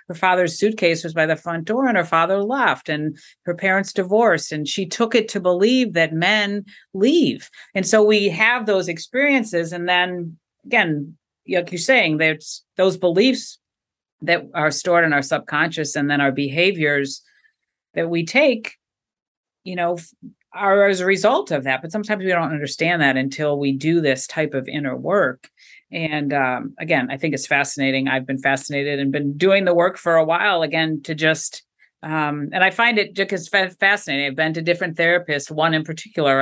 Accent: American